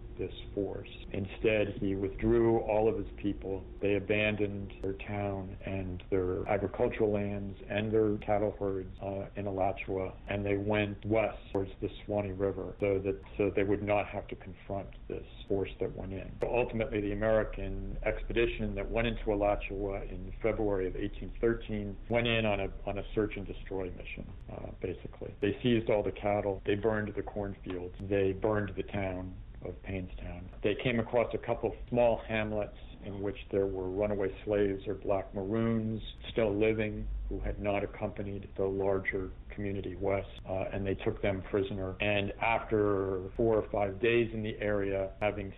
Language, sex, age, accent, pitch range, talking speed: English, male, 50-69, American, 95-110 Hz, 165 wpm